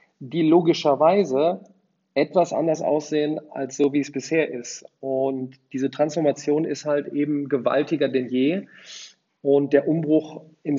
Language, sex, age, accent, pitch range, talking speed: German, male, 40-59, German, 140-160 Hz, 135 wpm